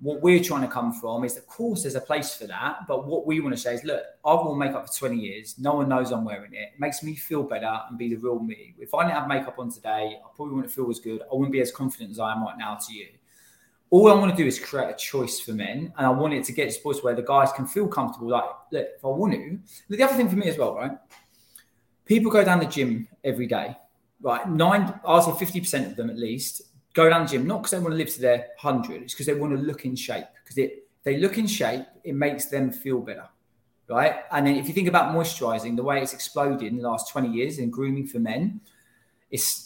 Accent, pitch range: British, 125-165 Hz